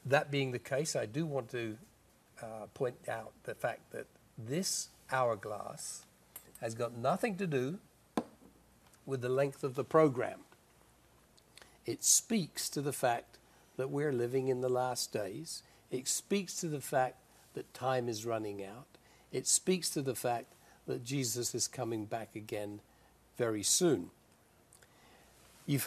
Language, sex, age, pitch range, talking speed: English, male, 60-79, 120-155 Hz, 145 wpm